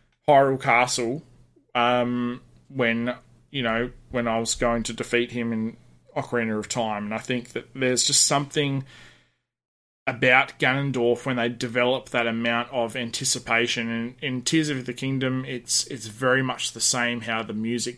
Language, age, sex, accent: English, 20-39, male, Australian